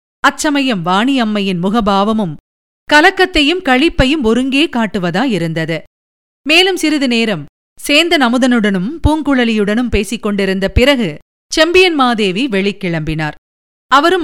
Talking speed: 80 wpm